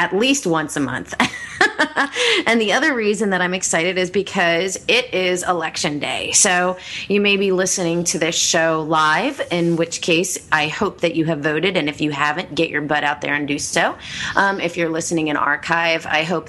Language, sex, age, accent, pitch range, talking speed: English, female, 30-49, American, 155-195 Hz, 205 wpm